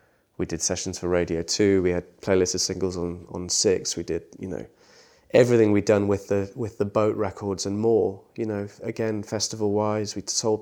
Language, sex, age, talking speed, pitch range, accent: English, male, 20-39, 205 wpm, 95-110 Hz, British